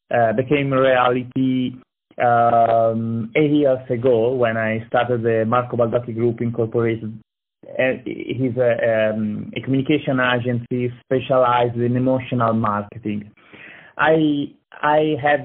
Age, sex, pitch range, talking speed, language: 30-49, male, 115-130 Hz, 115 wpm, English